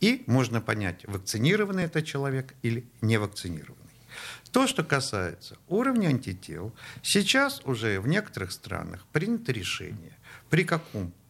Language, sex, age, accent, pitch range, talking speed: Russian, male, 50-69, native, 110-160 Hz, 120 wpm